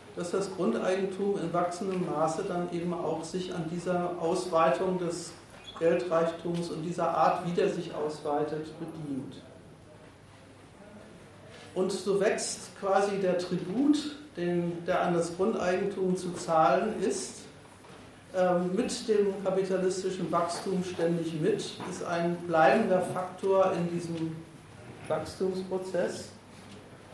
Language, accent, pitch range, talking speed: German, German, 165-190 Hz, 110 wpm